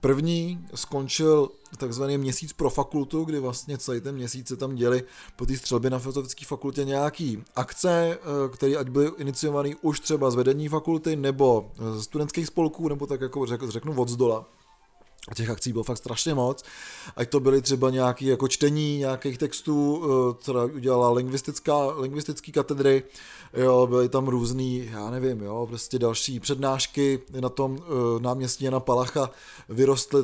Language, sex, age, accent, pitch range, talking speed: Czech, male, 30-49, native, 125-150 Hz, 155 wpm